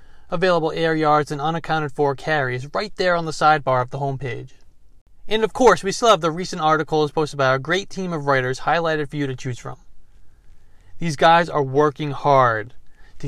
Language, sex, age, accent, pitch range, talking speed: English, male, 30-49, American, 120-165 Hz, 200 wpm